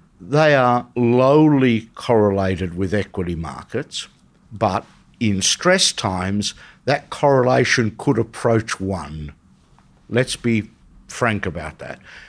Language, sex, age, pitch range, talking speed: English, male, 60-79, 100-135 Hz, 105 wpm